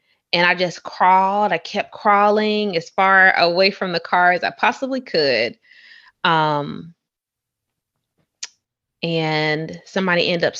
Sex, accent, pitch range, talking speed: female, American, 155-210 Hz, 125 wpm